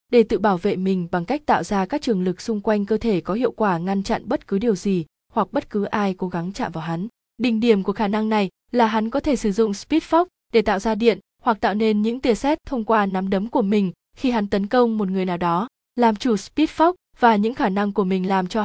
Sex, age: female, 20-39